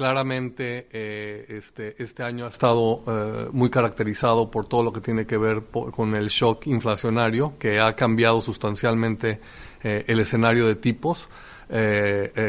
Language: Spanish